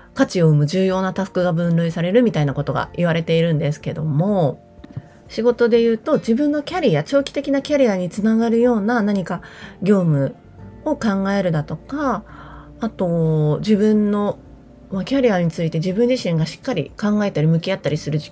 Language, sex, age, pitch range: Japanese, female, 30-49, 165-215 Hz